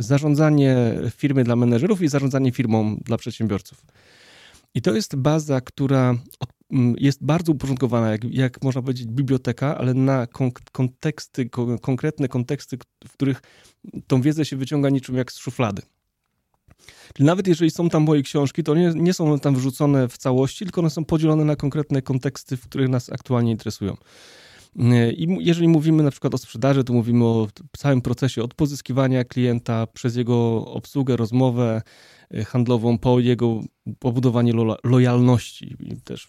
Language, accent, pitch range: Polish, native, 120-150 Hz